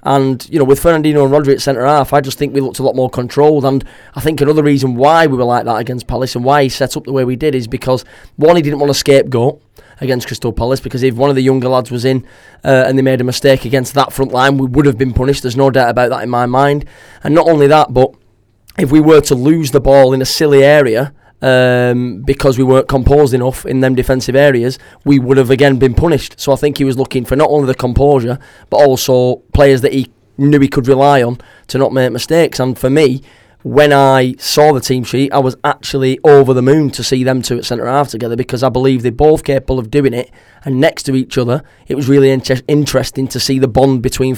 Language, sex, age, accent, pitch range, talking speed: English, male, 20-39, British, 125-140 Hz, 250 wpm